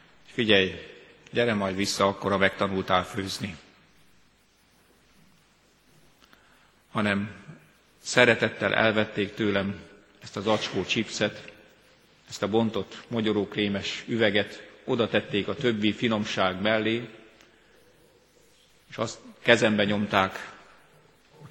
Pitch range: 100-110 Hz